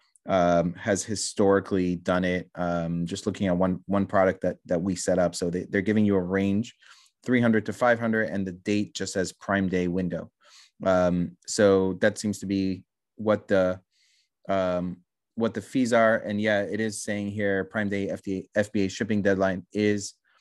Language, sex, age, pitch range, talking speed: English, male, 30-49, 95-110 Hz, 185 wpm